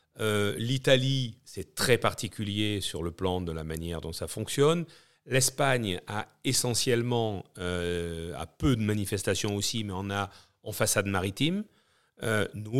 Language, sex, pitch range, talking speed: French, male, 100-140 Hz, 145 wpm